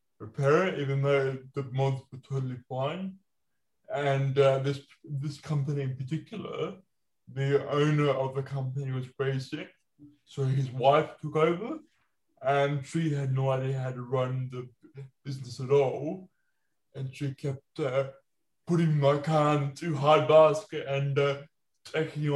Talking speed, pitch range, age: 140 wpm, 135-155 Hz, 20-39